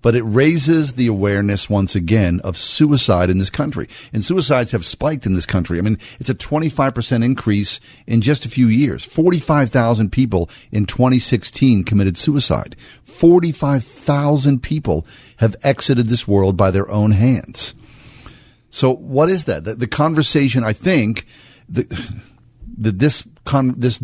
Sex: male